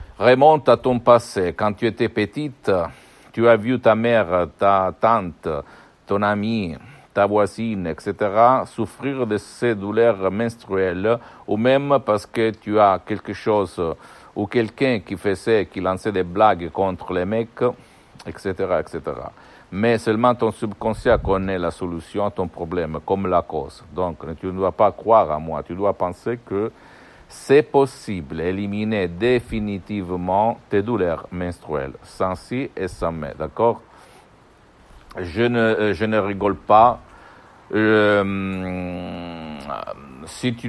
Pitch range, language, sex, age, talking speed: 95-115 Hz, Italian, male, 60-79, 135 wpm